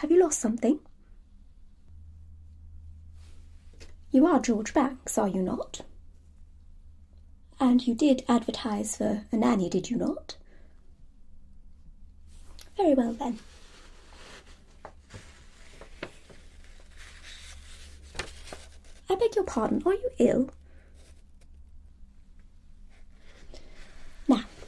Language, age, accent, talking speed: English, 30-49, British, 80 wpm